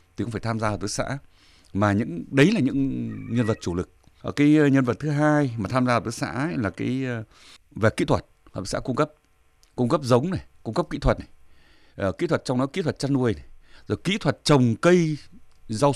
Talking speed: 235 wpm